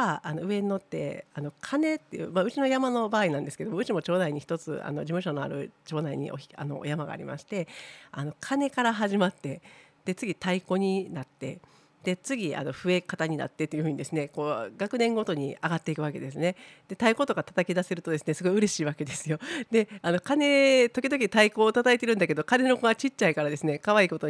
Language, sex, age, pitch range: Japanese, female, 50-69, 150-210 Hz